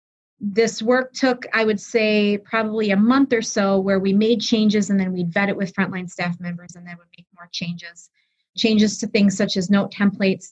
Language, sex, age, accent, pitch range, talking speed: English, female, 30-49, American, 180-210 Hz, 210 wpm